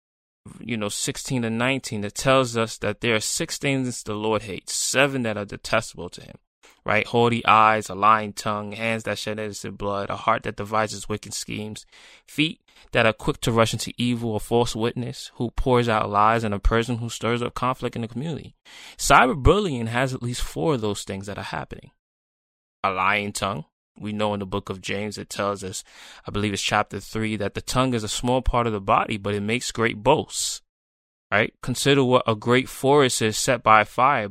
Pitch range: 105-125 Hz